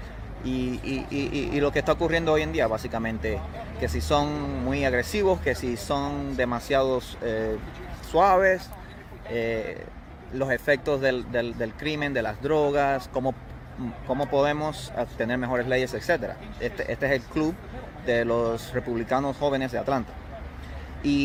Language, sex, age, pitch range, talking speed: Spanish, male, 30-49, 115-145 Hz, 145 wpm